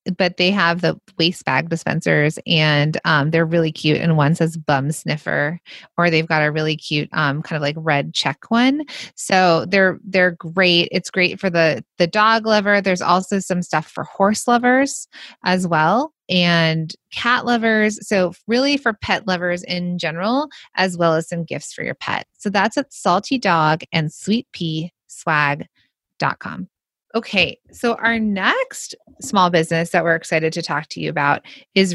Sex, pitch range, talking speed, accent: female, 165-210 Hz, 170 wpm, American